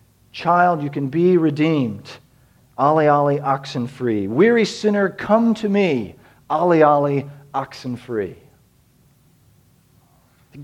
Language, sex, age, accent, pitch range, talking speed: English, male, 40-59, American, 130-190 Hz, 105 wpm